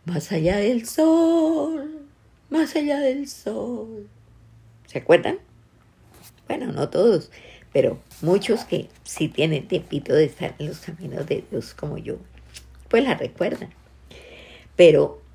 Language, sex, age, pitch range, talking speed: Spanish, female, 50-69, 135-200 Hz, 125 wpm